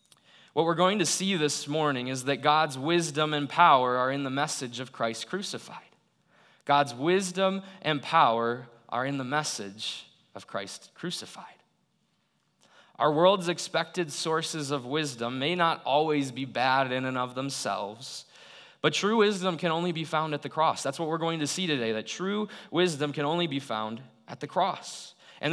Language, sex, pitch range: English, male, 130-175 Hz